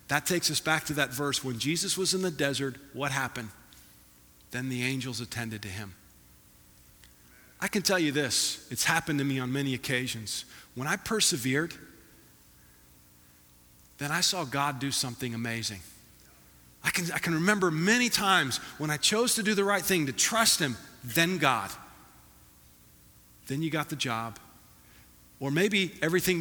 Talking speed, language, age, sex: 160 wpm, English, 40-59, male